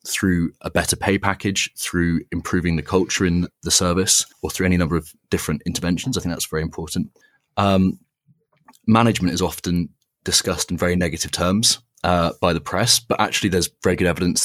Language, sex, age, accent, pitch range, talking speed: English, male, 30-49, British, 80-95 Hz, 185 wpm